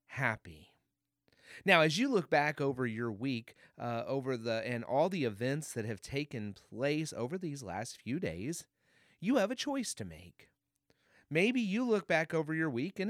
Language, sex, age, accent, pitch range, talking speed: English, male, 30-49, American, 120-185 Hz, 180 wpm